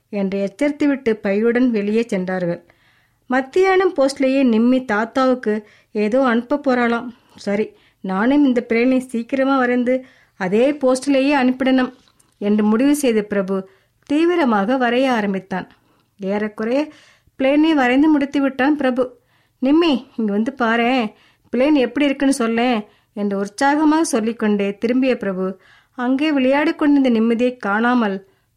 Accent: native